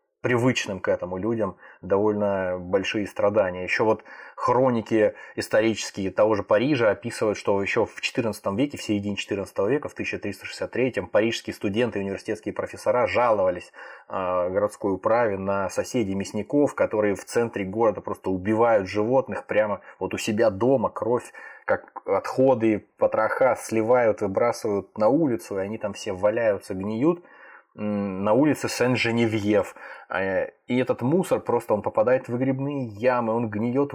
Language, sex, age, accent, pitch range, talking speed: Russian, male, 20-39, native, 100-125 Hz, 135 wpm